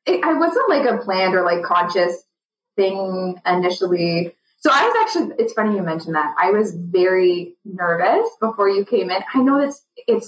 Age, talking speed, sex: 20-39, 185 wpm, female